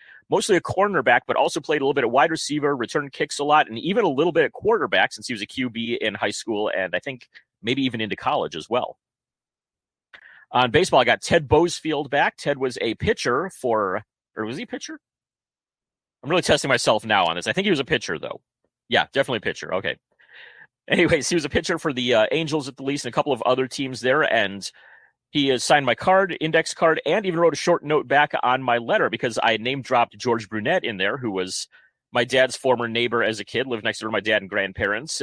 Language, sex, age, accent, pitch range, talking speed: English, male, 30-49, American, 115-150 Hz, 230 wpm